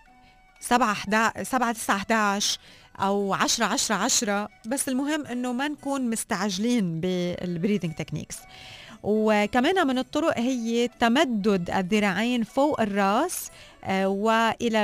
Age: 20-39